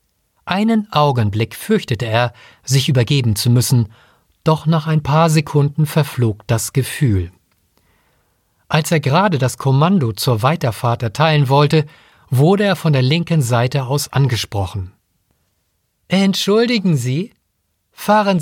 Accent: German